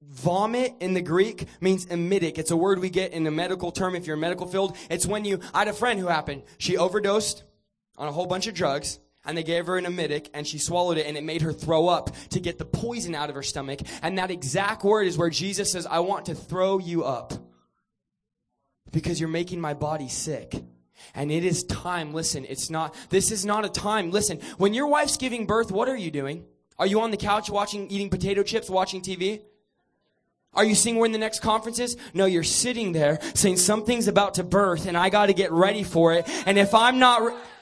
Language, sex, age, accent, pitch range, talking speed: English, male, 20-39, American, 165-245 Hz, 230 wpm